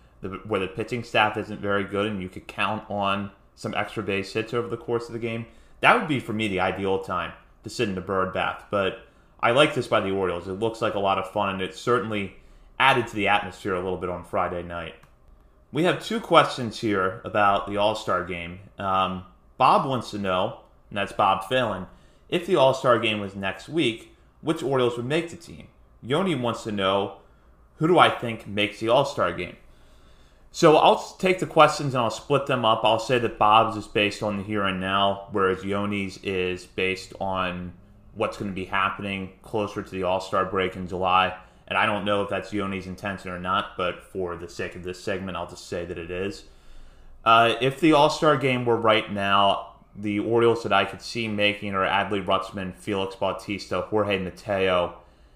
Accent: American